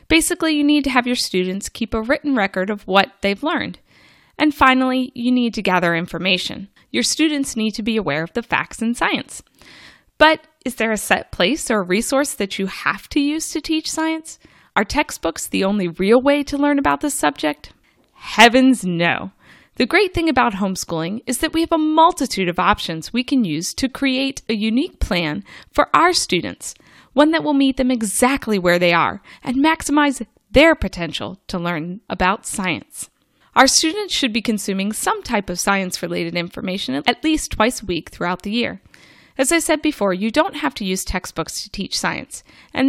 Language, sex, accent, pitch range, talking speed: English, female, American, 190-290 Hz, 190 wpm